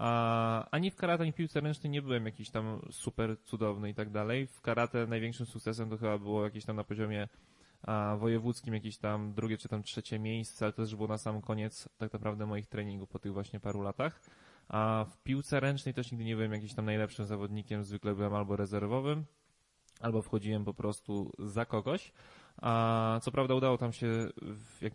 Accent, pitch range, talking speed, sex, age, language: native, 110-130 Hz, 190 wpm, male, 20-39, Polish